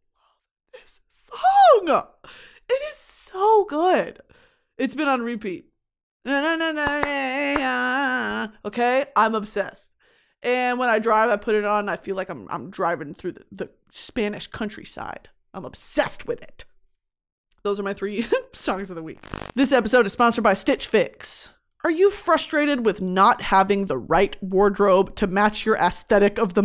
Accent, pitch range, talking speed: American, 190-265 Hz, 145 wpm